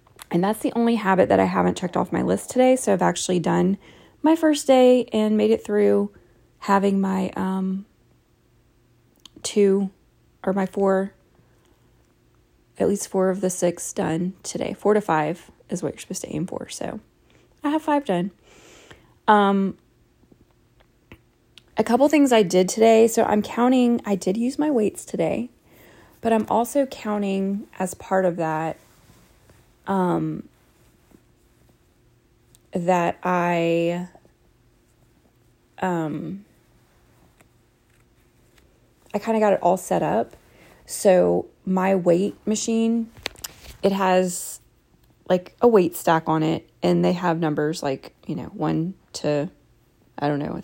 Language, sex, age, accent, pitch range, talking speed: English, female, 20-39, American, 160-210 Hz, 135 wpm